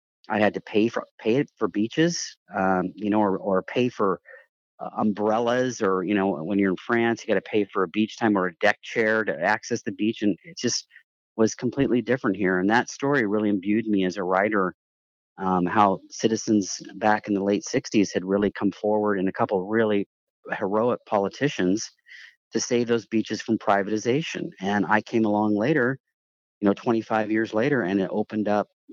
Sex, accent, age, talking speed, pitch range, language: male, American, 40-59, 195 wpm, 100-115 Hz, English